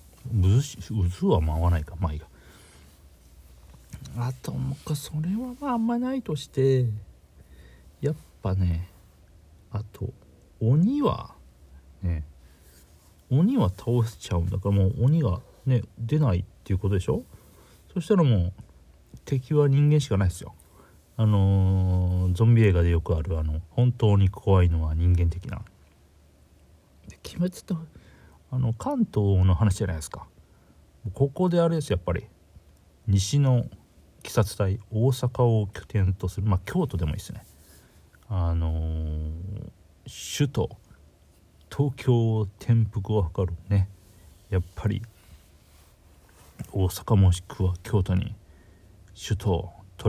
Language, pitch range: Japanese, 85-110 Hz